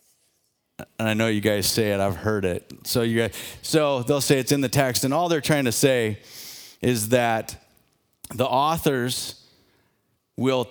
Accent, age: American, 30-49